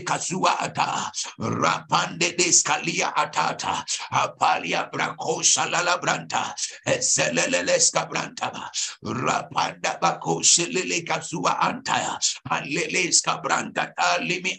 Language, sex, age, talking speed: English, male, 60-79, 95 wpm